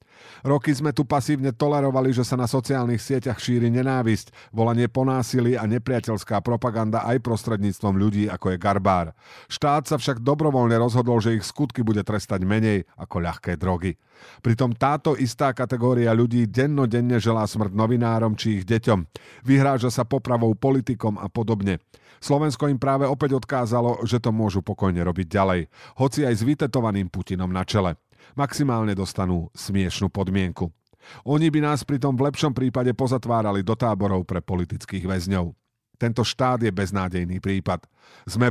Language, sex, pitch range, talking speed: Slovak, male, 100-130 Hz, 150 wpm